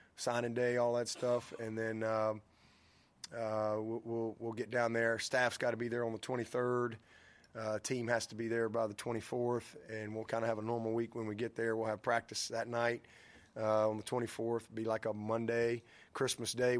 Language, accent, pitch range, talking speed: English, American, 115-130 Hz, 205 wpm